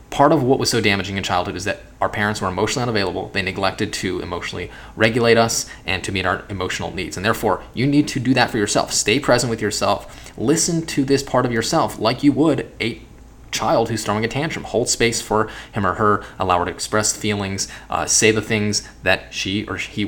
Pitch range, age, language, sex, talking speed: 100-120 Hz, 20-39, English, male, 220 wpm